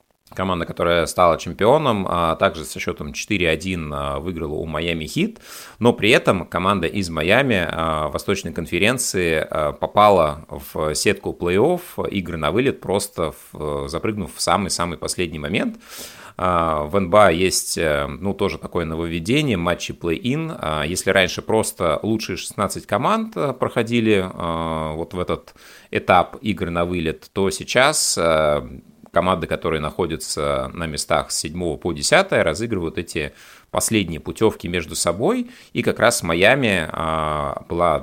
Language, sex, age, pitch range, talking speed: Russian, male, 30-49, 80-100 Hz, 130 wpm